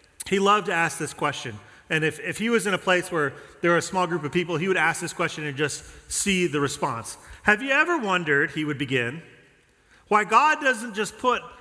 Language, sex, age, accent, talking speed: English, male, 40-59, American, 225 wpm